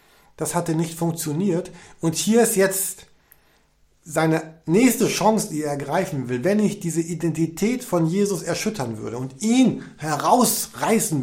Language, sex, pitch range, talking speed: German, male, 140-175 Hz, 140 wpm